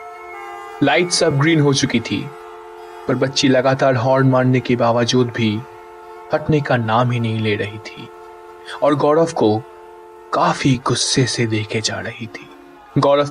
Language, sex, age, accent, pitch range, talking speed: Hindi, male, 20-39, native, 115-160 Hz, 150 wpm